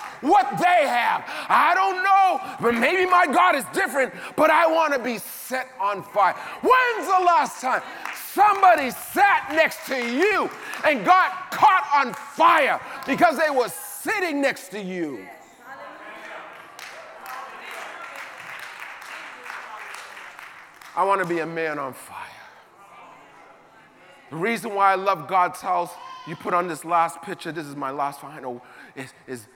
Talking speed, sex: 140 wpm, male